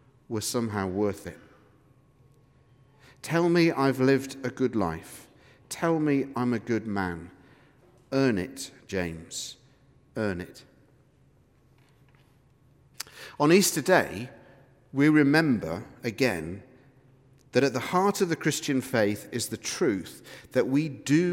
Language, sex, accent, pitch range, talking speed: English, male, British, 120-145 Hz, 120 wpm